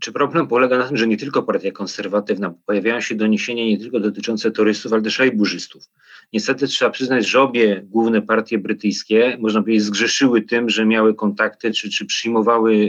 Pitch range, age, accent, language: 105-120 Hz, 40-59, native, Polish